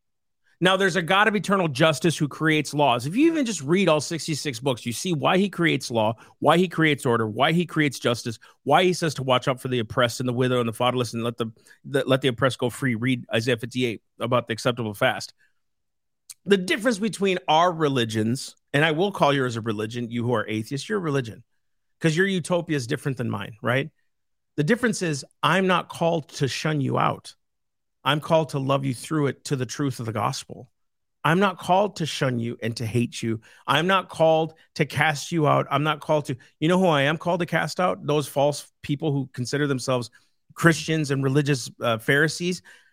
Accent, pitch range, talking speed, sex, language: American, 125-170 Hz, 215 wpm, male, English